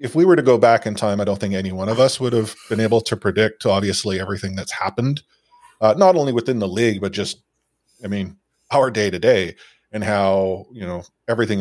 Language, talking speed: English, 215 wpm